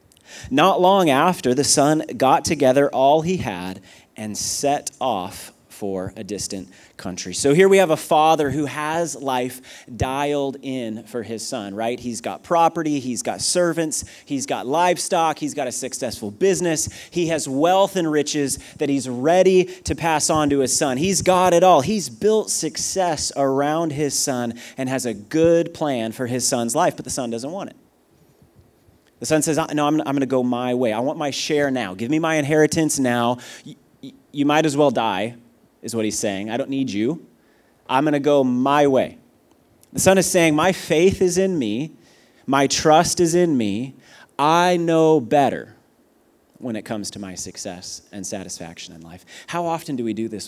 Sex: male